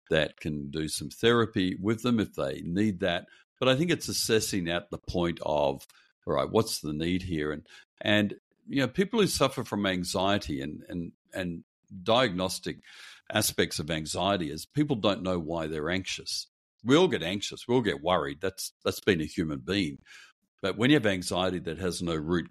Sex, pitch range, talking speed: male, 85-110 Hz, 190 wpm